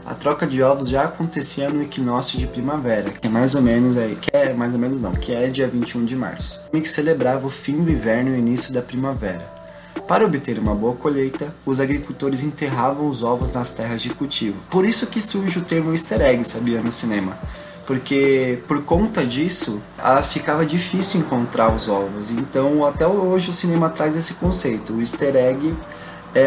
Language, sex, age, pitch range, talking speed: Portuguese, male, 20-39, 120-155 Hz, 195 wpm